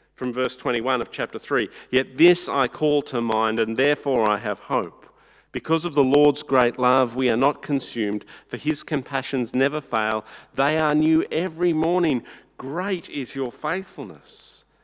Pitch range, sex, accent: 125-160 Hz, male, Australian